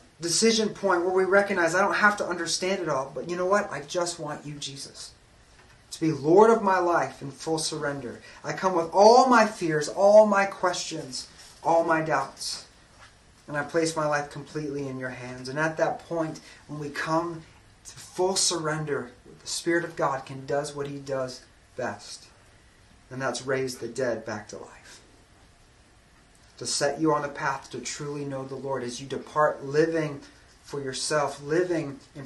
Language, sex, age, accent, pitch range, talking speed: English, male, 30-49, American, 130-165 Hz, 180 wpm